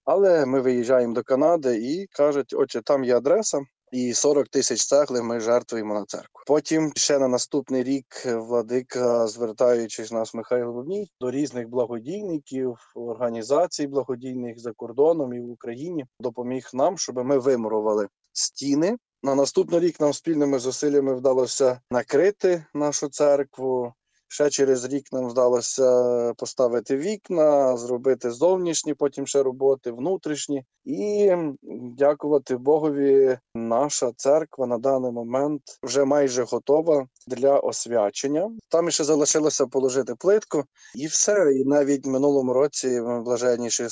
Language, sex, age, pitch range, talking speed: Ukrainian, male, 20-39, 120-145 Hz, 130 wpm